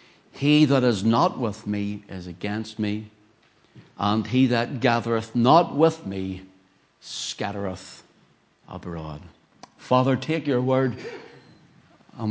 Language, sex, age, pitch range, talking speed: English, male, 60-79, 100-120 Hz, 110 wpm